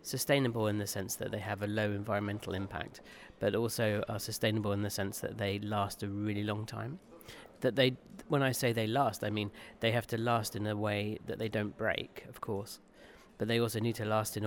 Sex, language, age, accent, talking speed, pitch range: male, Czech, 40-59, British, 225 wpm, 105-120 Hz